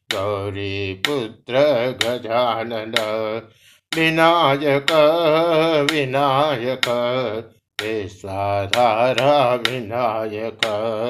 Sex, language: male, Hindi